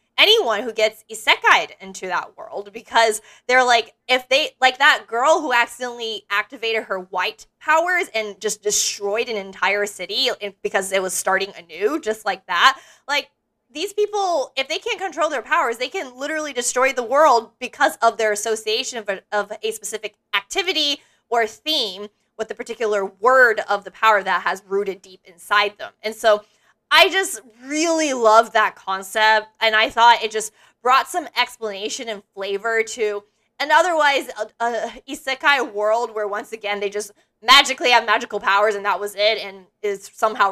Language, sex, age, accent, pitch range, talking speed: English, female, 20-39, American, 205-255 Hz, 170 wpm